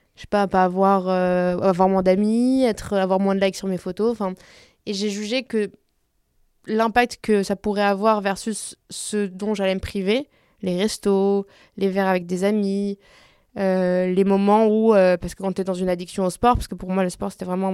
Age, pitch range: 20-39, 185-210 Hz